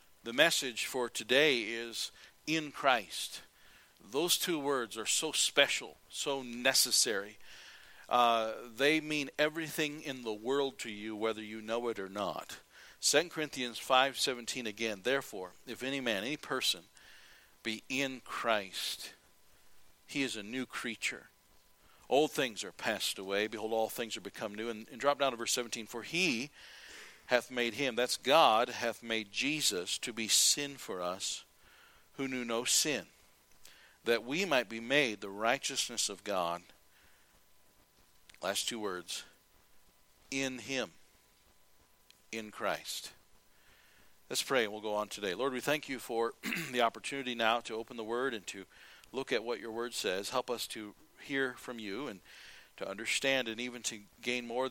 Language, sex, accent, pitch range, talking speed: English, male, American, 110-130 Hz, 155 wpm